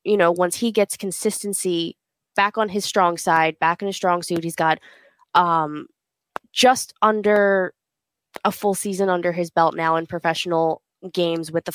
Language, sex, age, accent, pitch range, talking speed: English, female, 10-29, American, 165-215 Hz, 170 wpm